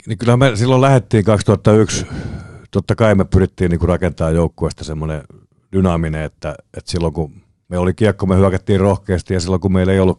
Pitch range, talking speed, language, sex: 80-95 Hz, 185 wpm, Finnish, male